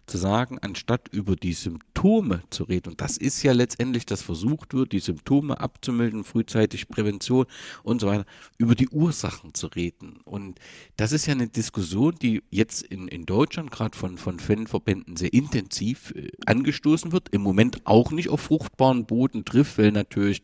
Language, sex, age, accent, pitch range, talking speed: German, male, 50-69, German, 105-130 Hz, 175 wpm